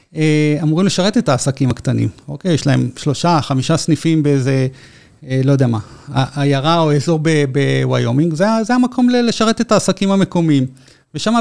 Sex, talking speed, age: male, 145 wpm, 30-49